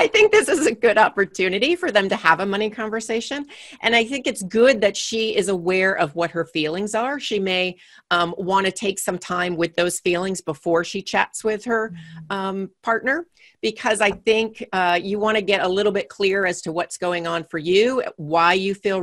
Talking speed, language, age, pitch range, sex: 215 wpm, English, 40-59, 165-215 Hz, female